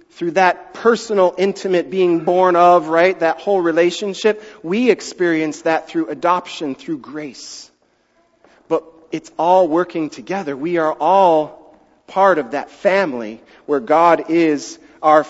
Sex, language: male, English